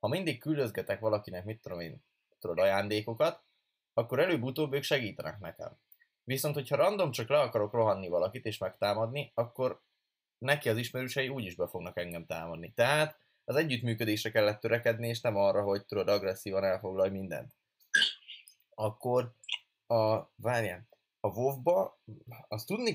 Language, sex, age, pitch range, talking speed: Hungarian, male, 20-39, 100-125 Hz, 140 wpm